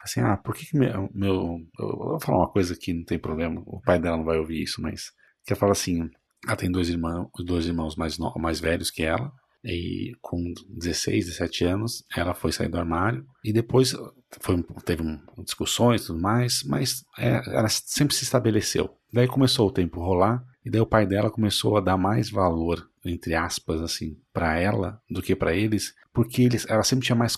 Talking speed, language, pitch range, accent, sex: 210 wpm, Portuguese, 90-130 Hz, Brazilian, male